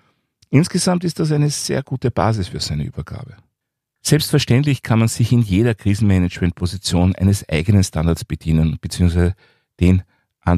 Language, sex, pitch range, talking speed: German, male, 95-130 Hz, 135 wpm